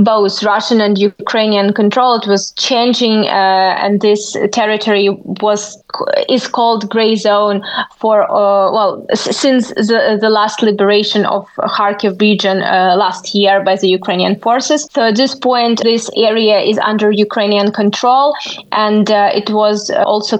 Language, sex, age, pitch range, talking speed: English, female, 20-39, 200-220 Hz, 145 wpm